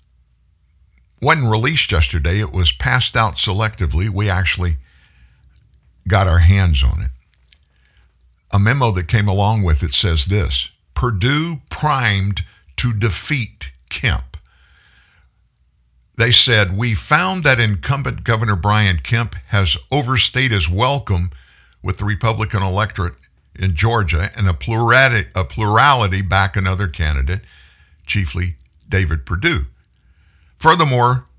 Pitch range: 75-110 Hz